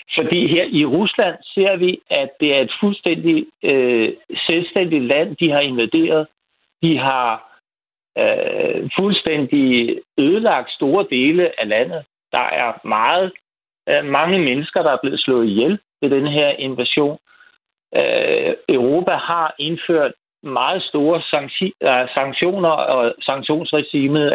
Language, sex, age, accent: Danish, male, 60-79, native